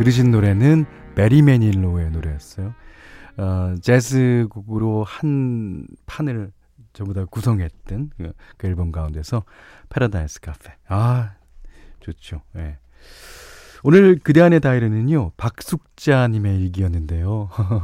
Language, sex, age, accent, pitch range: Korean, male, 40-59, native, 90-135 Hz